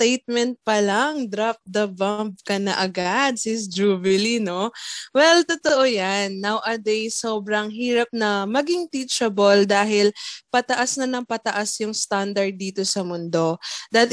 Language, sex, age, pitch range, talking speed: Filipino, female, 20-39, 200-275 Hz, 135 wpm